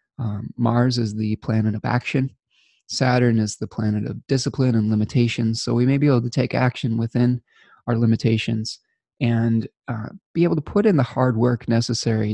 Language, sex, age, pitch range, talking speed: English, male, 20-39, 115-130 Hz, 180 wpm